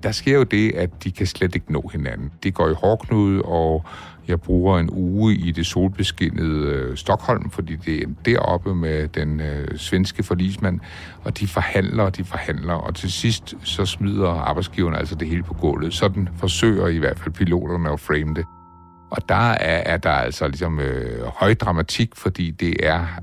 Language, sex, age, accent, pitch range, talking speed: Danish, male, 60-79, native, 80-95 Hz, 190 wpm